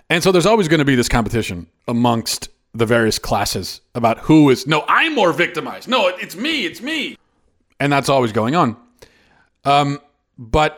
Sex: male